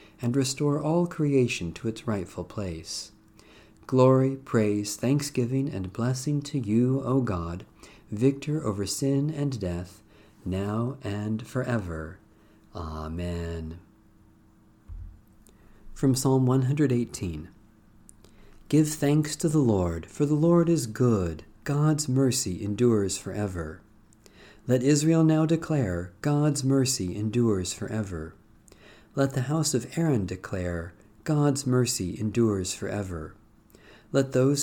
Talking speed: 110 wpm